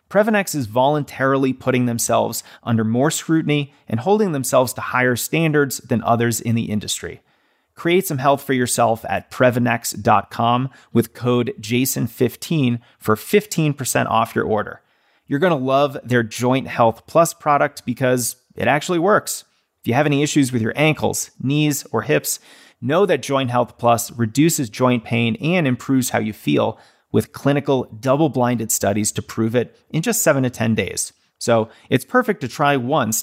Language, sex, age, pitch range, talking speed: English, male, 30-49, 115-145 Hz, 160 wpm